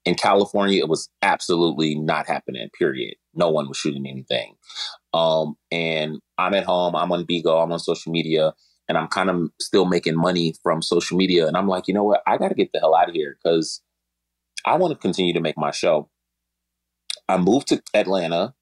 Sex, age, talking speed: male, 30-49, 200 wpm